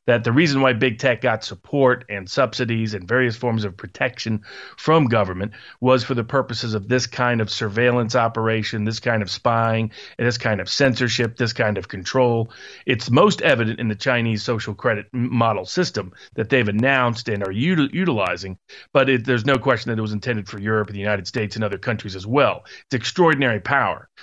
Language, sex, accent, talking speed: English, male, American, 200 wpm